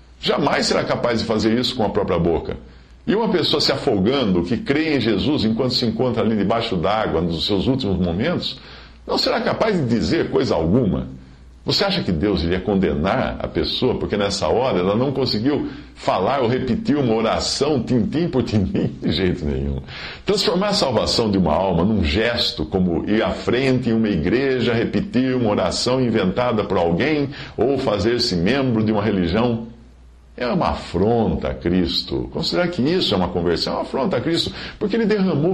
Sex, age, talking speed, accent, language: male, 50-69, 180 wpm, Brazilian, English